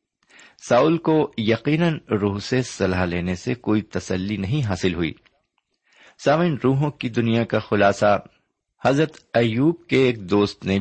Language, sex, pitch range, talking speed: Urdu, male, 95-135 Hz, 140 wpm